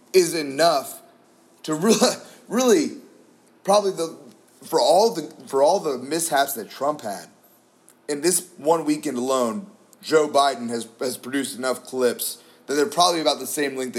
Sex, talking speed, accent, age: male, 155 wpm, American, 30-49